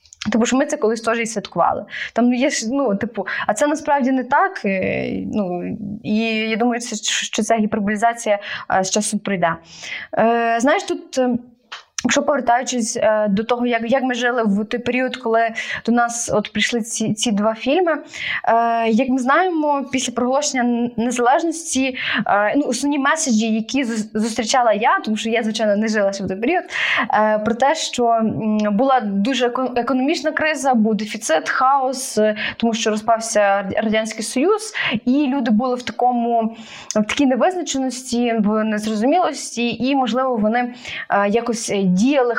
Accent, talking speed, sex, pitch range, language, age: native, 155 wpm, female, 215-260 Hz, Ukrainian, 20-39